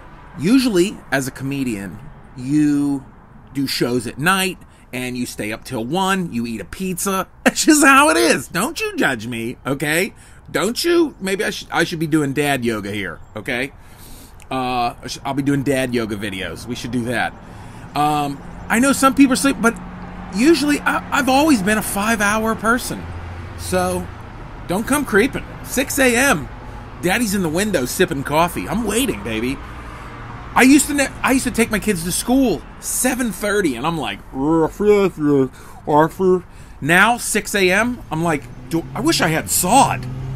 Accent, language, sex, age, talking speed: American, English, male, 30-49, 160 wpm